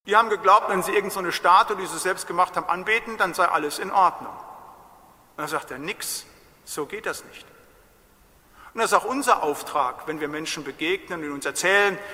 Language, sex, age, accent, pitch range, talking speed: German, male, 50-69, German, 170-235 Hz, 205 wpm